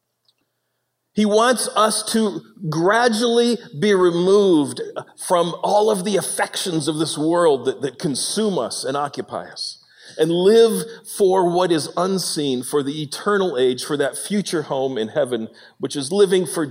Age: 40-59